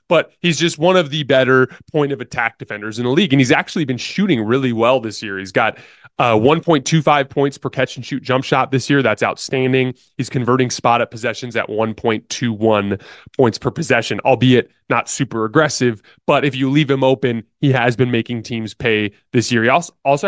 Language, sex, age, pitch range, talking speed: English, male, 20-39, 115-150 Hz, 200 wpm